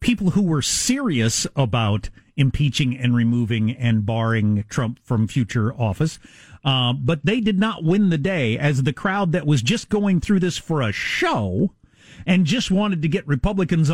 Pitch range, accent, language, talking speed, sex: 130-200 Hz, American, English, 170 wpm, male